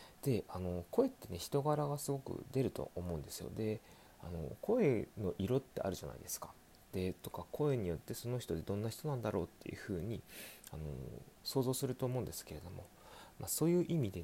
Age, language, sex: 30-49, Japanese, male